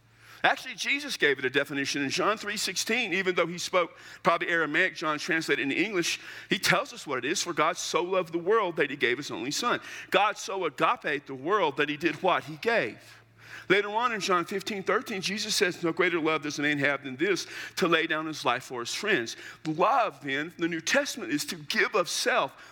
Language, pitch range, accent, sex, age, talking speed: English, 125-205 Hz, American, male, 50-69, 220 wpm